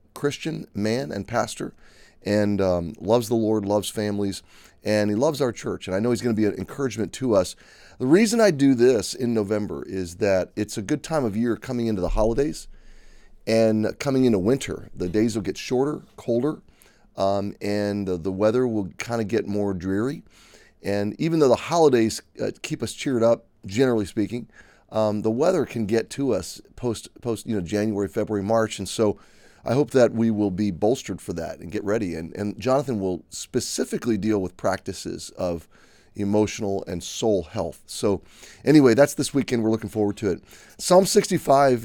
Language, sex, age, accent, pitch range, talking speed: English, male, 30-49, American, 100-120 Hz, 190 wpm